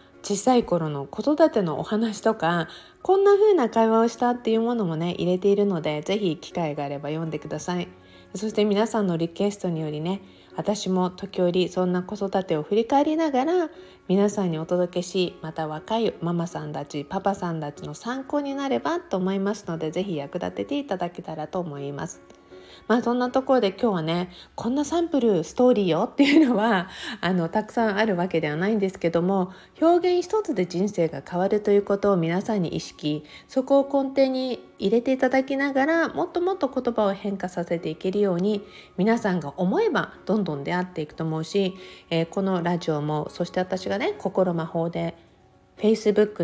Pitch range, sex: 165-225 Hz, female